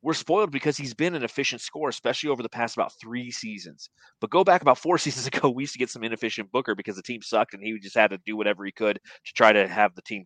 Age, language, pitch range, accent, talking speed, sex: 30-49, English, 105-135 Hz, American, 280 wpm, male